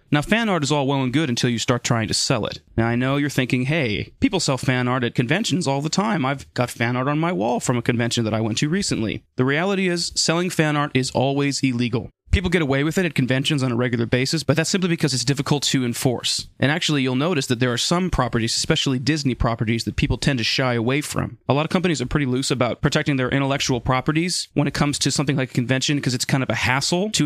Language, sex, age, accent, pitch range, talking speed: English, male, 30-49, American, 120-150 Hz, 260 wpm